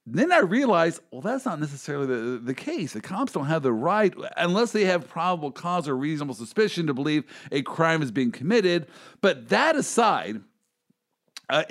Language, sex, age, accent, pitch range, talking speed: English, male, 50-69, American, 140-185 Hz, 180 wpm